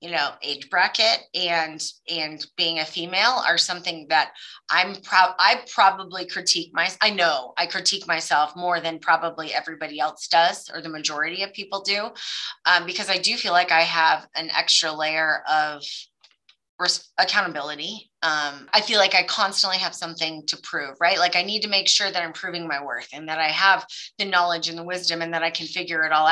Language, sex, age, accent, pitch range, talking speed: English, female, 30-49, American, 160-190 Hz, 200 wpm